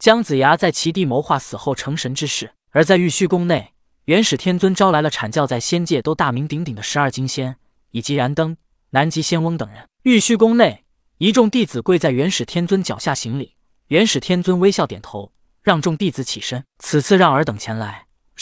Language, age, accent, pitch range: Chinese, 20-39, native, 130-190 Hz